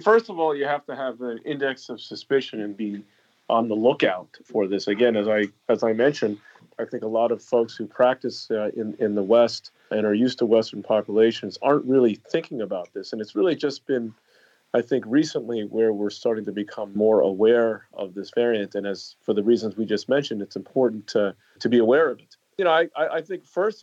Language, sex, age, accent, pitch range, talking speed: English, male, 40-59, American, 105-125 Hz, 220 wpm